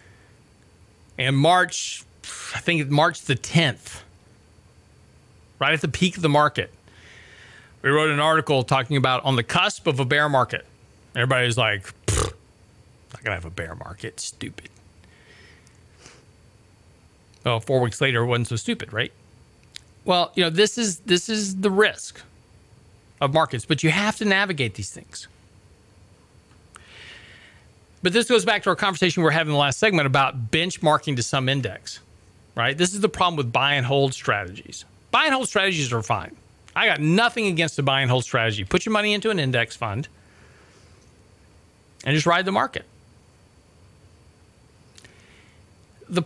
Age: 40-59